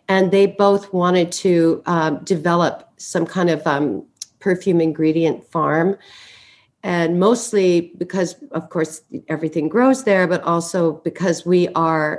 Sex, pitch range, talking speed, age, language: female, 160-190 Hz, 135 wpm, 50-69, English